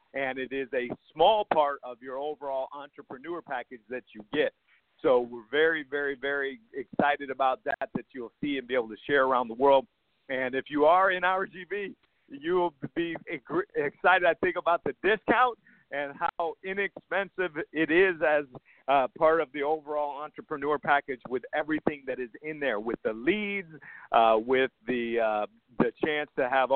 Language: English